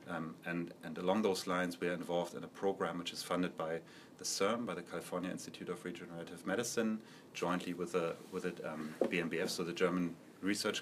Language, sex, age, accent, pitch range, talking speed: English, male, 30-49, German, 85-100 Hz, 200 wpm